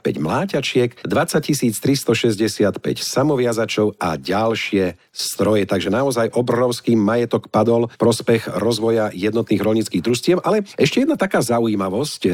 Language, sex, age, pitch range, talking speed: Slovak, male, 50-69, 100-125 Hz, 110 wpm